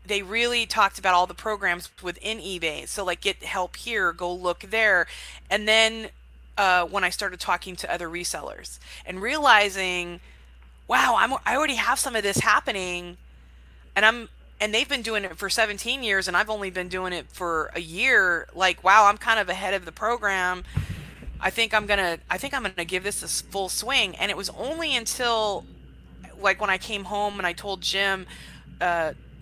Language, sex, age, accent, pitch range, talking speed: English, female, 20-39, American, 170-200 Hz, 195 wpm